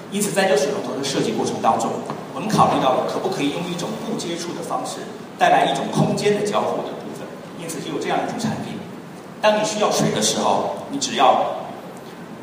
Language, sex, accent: Chinese, male, native